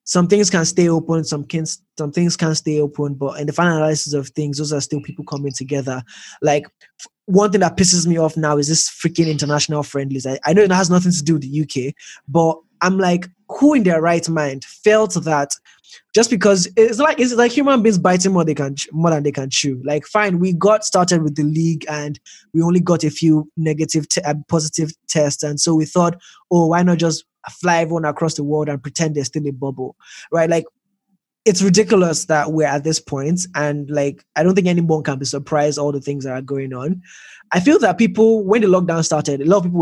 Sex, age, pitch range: male, 20-39, 150-180 Hz